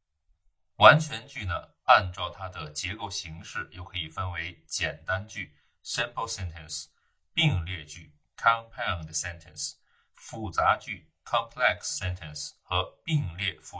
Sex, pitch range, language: male, 80-100 Hz, Chinese